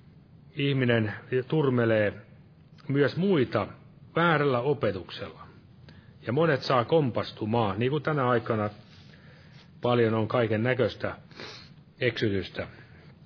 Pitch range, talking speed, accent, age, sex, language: 115-150 Hz, 85 wpm, native, 40-59, male, Finnish